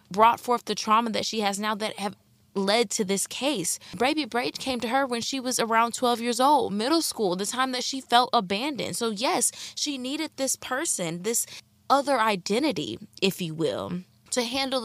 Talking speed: 195 wpm